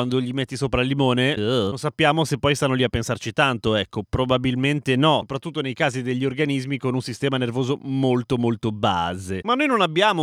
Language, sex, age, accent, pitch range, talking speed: Italian, male, 30-49, native, 135-200 Hz, 200 wpm